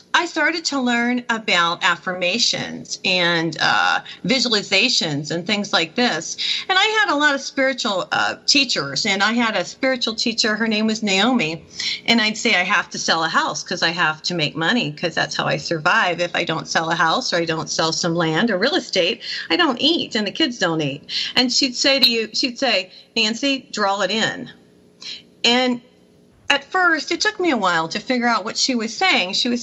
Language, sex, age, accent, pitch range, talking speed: English, female, 40-59, American, 180-265 Hz, 210 wpm